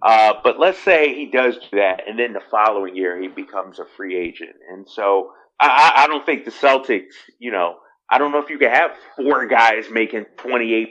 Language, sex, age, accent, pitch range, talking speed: English, male, 30-49, American, 100-150 Hz, 215 wpm